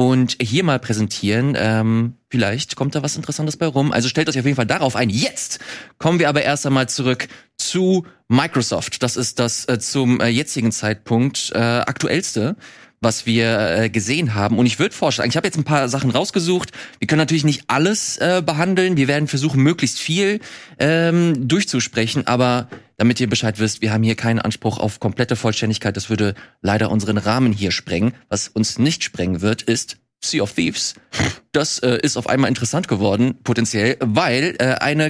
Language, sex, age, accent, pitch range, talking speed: German, male, 30-49, German, 115-155 Hz, 185 wpm